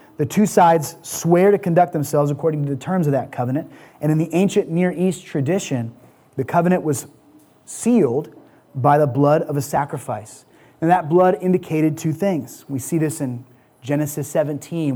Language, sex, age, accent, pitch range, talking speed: English, male, 30-49, American, 130-155 Hz, 175 wpm